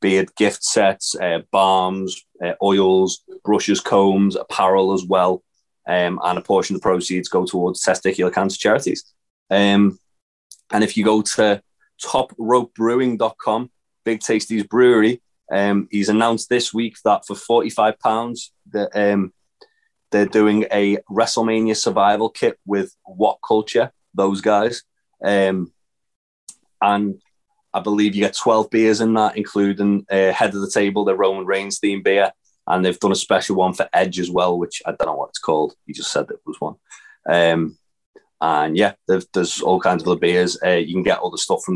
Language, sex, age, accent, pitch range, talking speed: English, male, 20-39, British, 90-110 Hz, 170 wpm